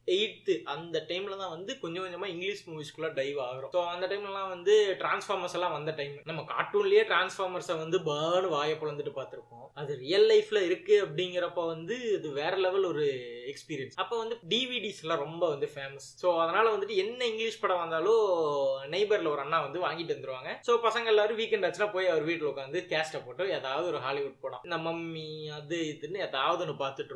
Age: 20-39